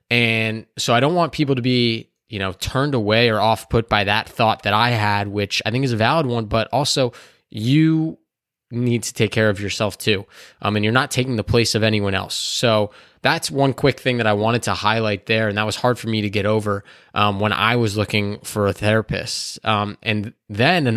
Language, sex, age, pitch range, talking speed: English, male, 20-39, 105-125 Hz, 225 wpm